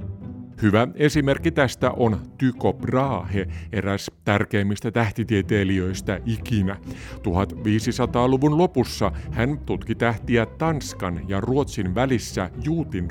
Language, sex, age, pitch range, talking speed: Finnish, male, 50-69, 95-125 Hz, 90 wpm